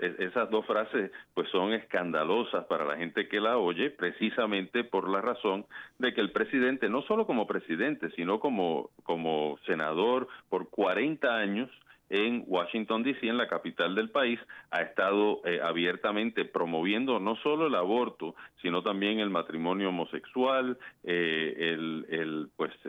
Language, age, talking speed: Spanish, 40-59, 150 wpm